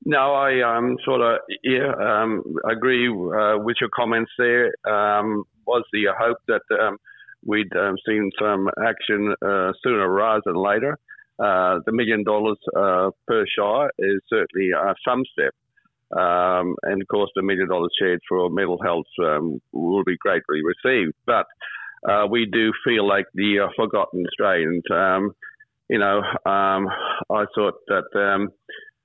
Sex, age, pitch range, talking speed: male, 50-69, 95-125 Hz, 155 wpm